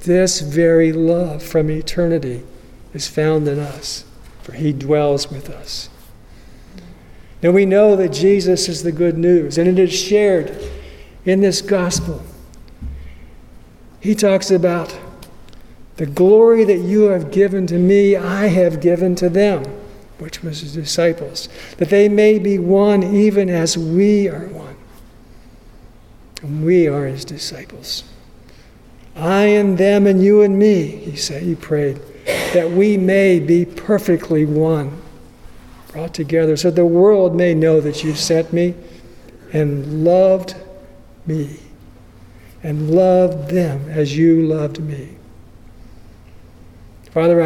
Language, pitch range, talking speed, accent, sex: English, 140-185 Hz, 130 wpm, American, male